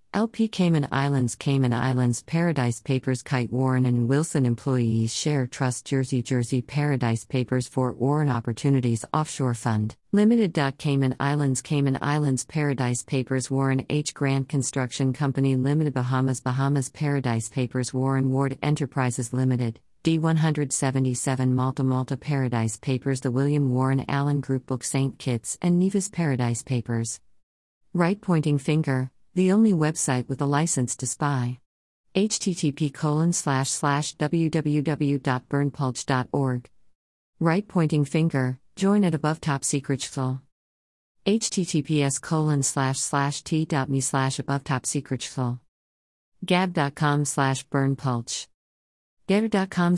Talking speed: 120 wpm